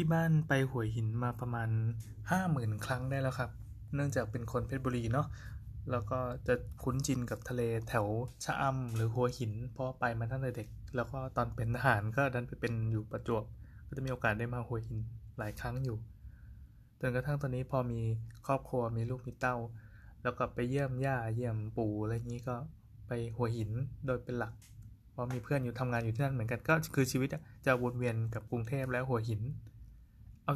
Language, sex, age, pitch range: Thai, male, 20-39, 110-135 Hz